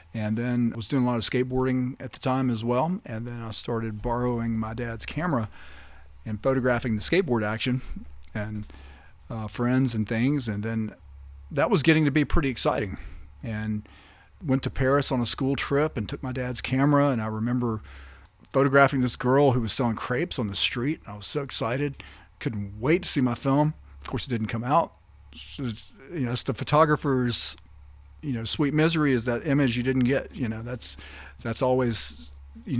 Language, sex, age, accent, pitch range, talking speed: English, male, 40-59, American, 110-140 Hz, 190 wpm